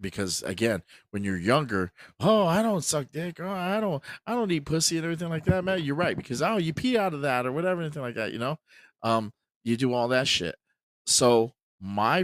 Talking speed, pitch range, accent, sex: 225 wpm, 90-140 Hz, American, male